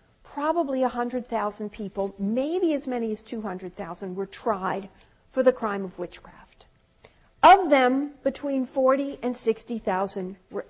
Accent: American